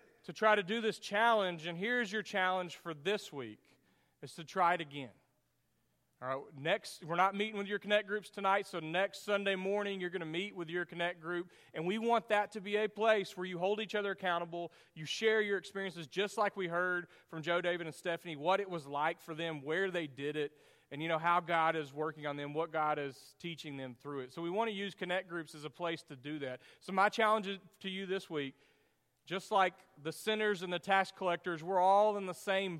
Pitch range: 160-200 Hz